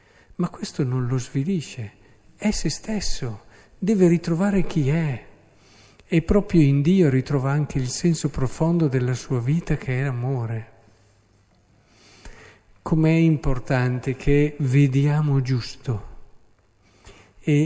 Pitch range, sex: 120-155 Hz, male